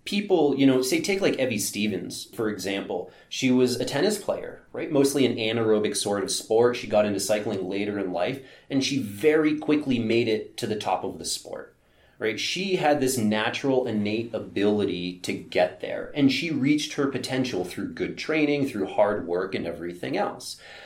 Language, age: English, 30-49